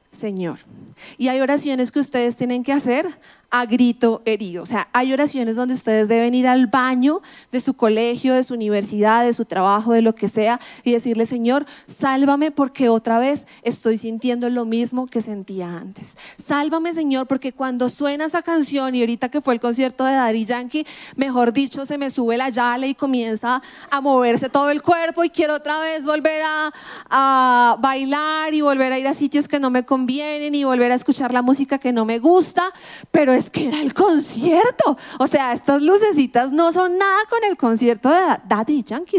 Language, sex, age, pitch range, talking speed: Spanish, female, 30-49, 240-305 Hz, 195 wpm